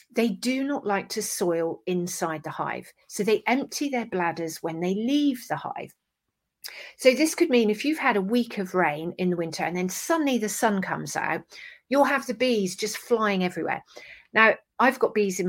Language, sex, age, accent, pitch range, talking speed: English, female, 40-59, British, 180-245 Hz, 200 wpm